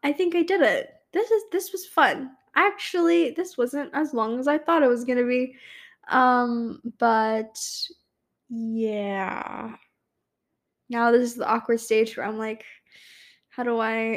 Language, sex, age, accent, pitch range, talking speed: English, female, 10-29, American, 225-345 Hz, 160 wpm